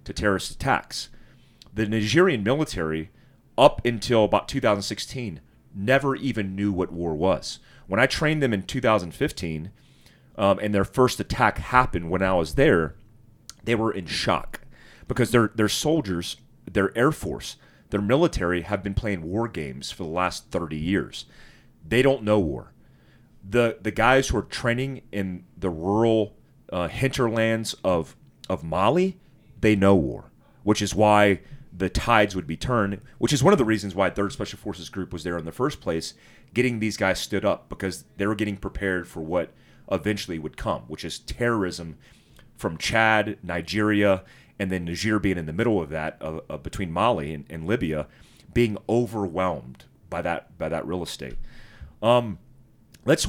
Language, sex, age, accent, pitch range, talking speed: English, male, 30-49, American, 95-120 Hz, 165 wpm